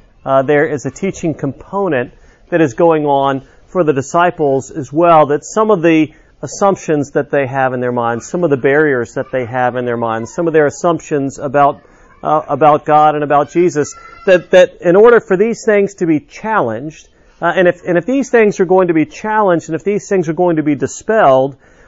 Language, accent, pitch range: English, American, 140-175 Hz